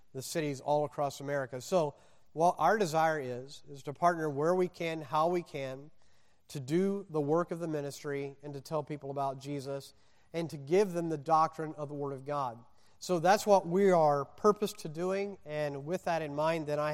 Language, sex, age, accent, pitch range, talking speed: English, male, 40-59, American, 140-165 Hz, 205 wpm